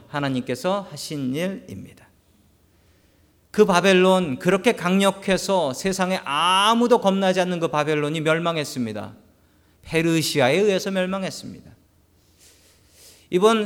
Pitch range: 120-180 Hz